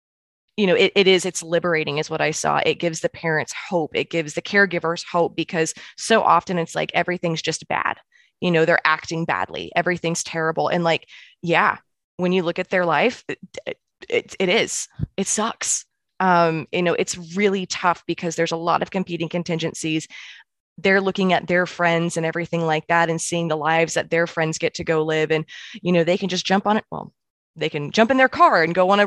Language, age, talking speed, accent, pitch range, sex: English, 20-39, 215 wpm, American, 160-195 Hz, female